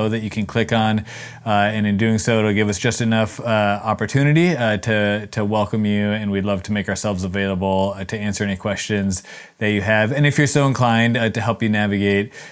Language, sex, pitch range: English, male, 100-115 Hz